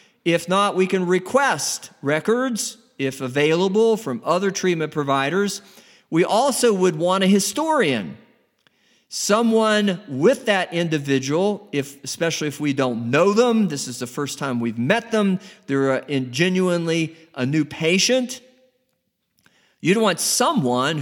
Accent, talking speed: American, 125 wpm